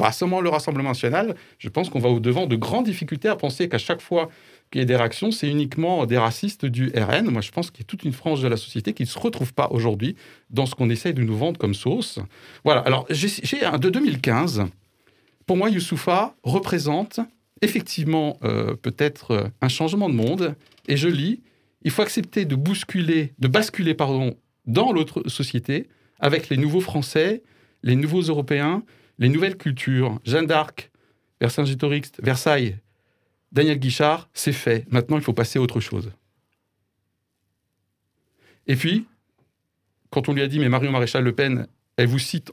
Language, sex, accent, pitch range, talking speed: French, male, French, 120-160 Hz, 175 wpm